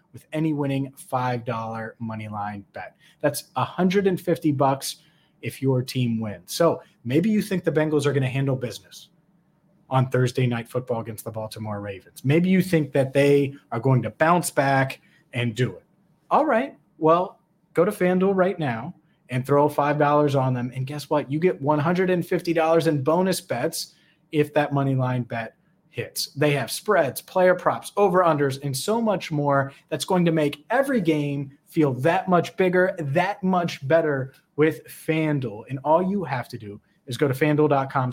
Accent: American